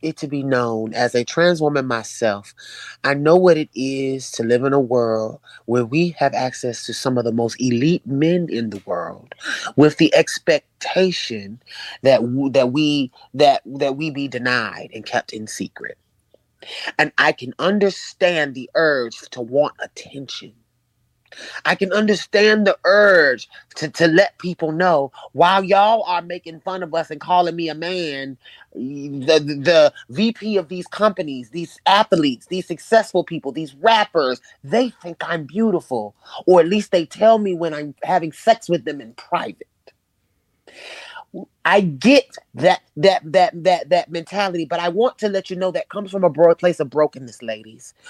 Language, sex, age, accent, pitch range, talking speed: English, male, 30-49, American, 140-195 Hz, 165 wpm